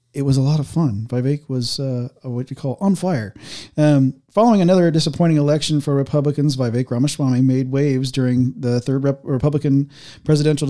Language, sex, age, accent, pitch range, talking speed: English, male, 40-59, American, 130-155 Hz, 170 wpm